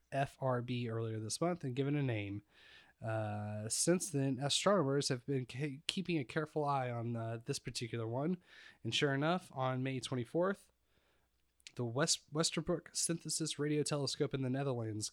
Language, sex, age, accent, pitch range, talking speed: English, male, 20-39, American, 115-145 Hz, 155 wpm